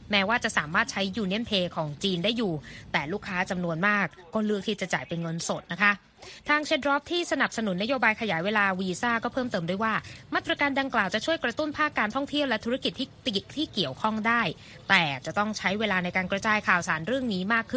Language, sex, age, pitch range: Thai, female, 20-39, 185-240 Hz